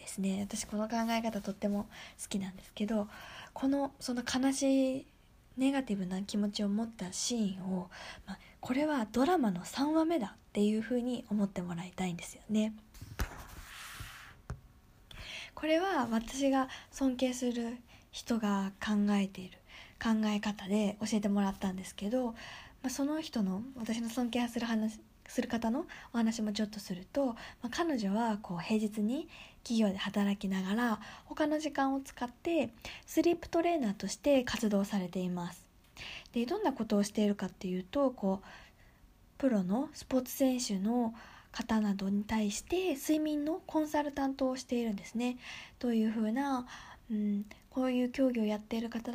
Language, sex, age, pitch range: Japanese, female, 20-39, 205-265 Hz